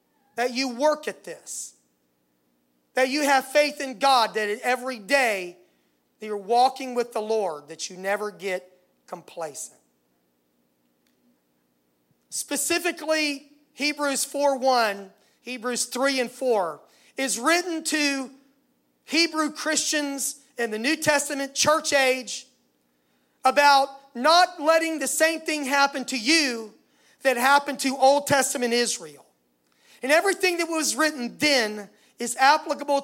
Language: English